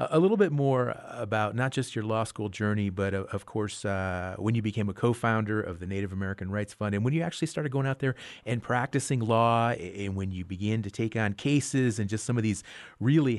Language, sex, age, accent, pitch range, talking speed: English, male, 40-59, American, 105-135 Hz, 230 wpm